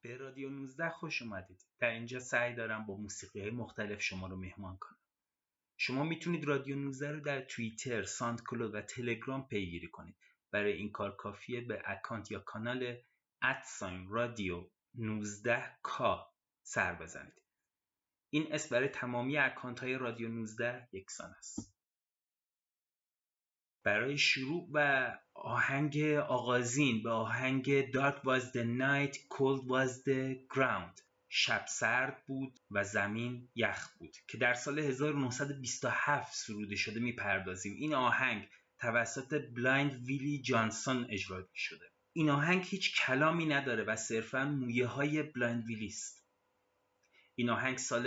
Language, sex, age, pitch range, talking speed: Persian, male, 30-49, 110-135 Hz, 130 wpm